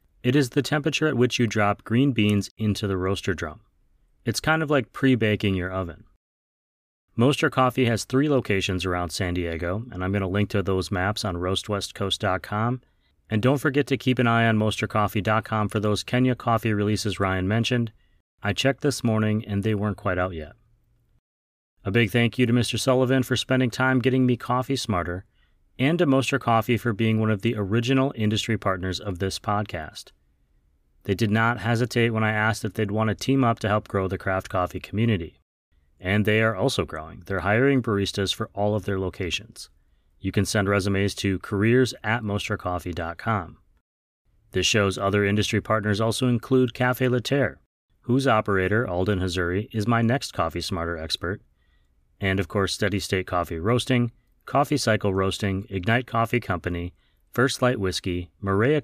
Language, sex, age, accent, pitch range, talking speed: English, male, 30-49, American, 95-120 Hz, 175 wpm